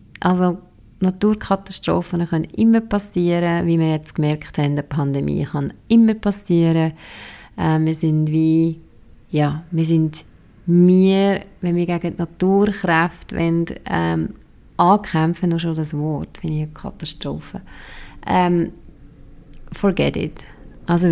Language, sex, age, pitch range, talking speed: German, female, 30-49, 155-185 Hz, 120 wpm